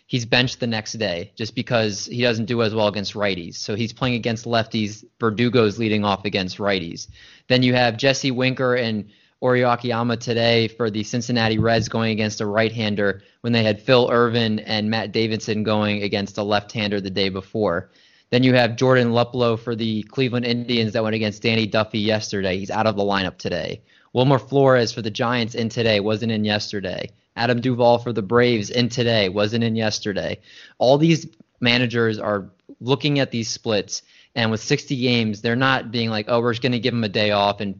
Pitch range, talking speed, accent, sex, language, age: 105-120 Hz, 195 wpm, American, male, English, 20-39